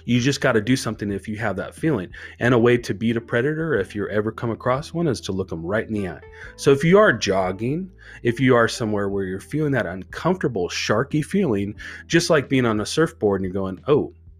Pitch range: 95-120 Hz